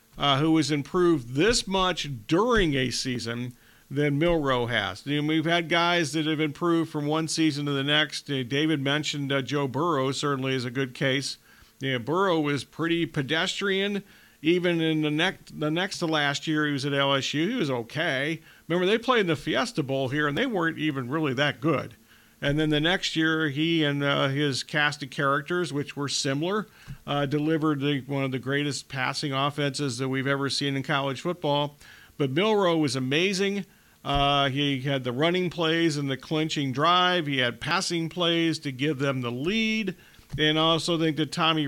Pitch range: 140-165 Hz